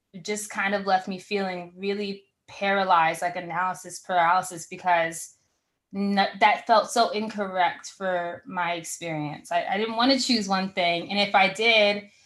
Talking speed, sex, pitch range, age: 150 wpm, female, 180-210 Hz, 20-39